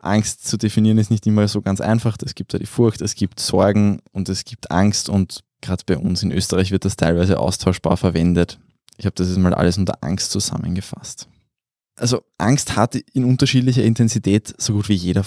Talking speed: 200 wpm